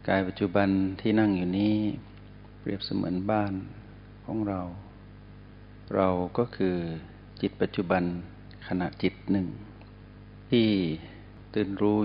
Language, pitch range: Thai, 95-105 Hz